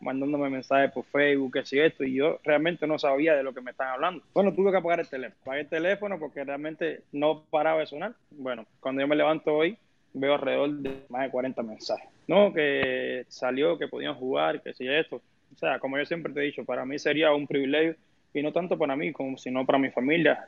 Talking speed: 230 wpm